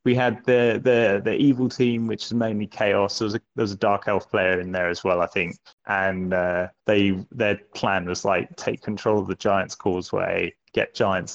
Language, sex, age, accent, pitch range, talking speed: English, male, 20-39, British, 90-115 Hz, 215 wpm